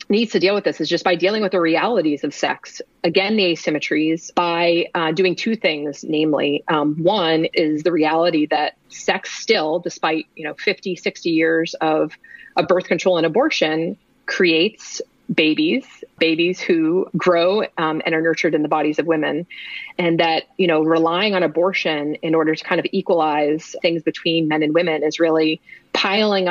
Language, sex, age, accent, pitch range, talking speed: English, female, 30-49, American, 160-195 Hz, 175 wpm